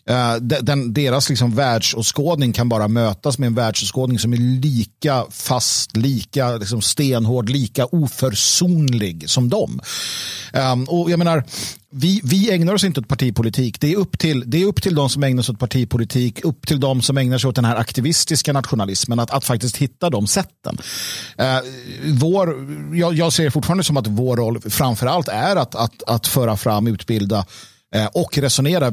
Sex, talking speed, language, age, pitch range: male, 170 wpm, Swedish, 50-69, 115-145 Hz